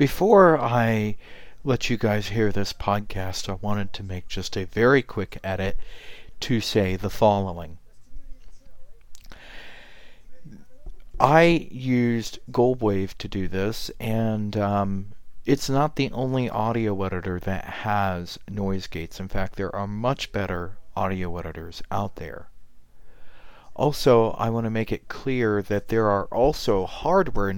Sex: male